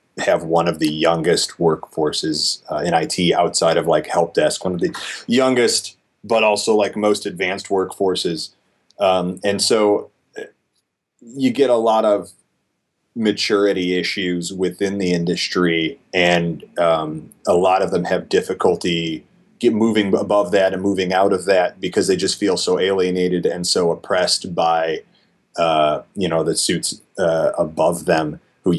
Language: English